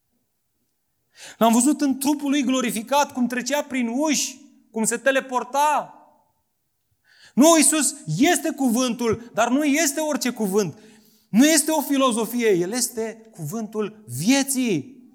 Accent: native